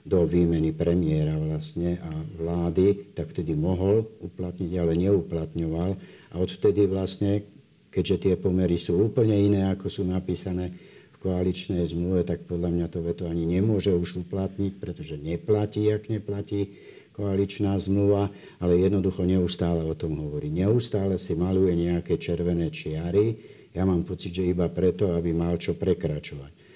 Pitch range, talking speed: 80-95 Hz, 145 wpm